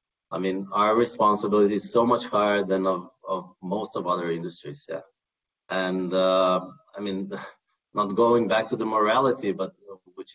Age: 30-49